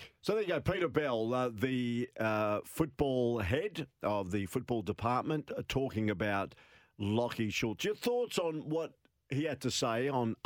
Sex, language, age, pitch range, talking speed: male, English, 50-69, 95-120 Hz, 165 wpm